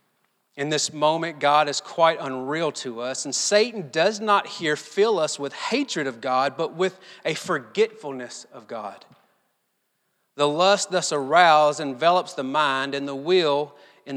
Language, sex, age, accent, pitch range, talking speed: English, male, 40-59, American, 135-185 Hz, 155 wpm